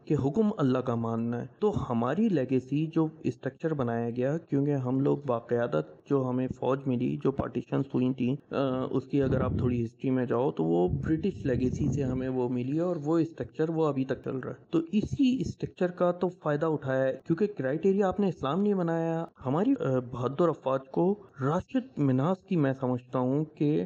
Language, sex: Urdu, male